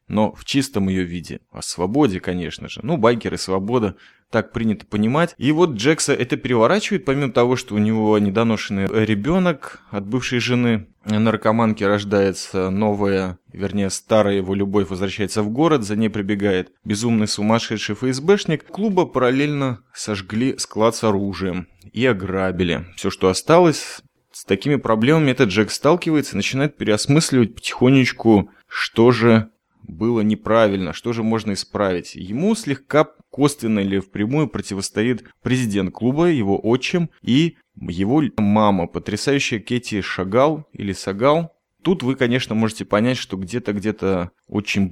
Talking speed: 135 wpm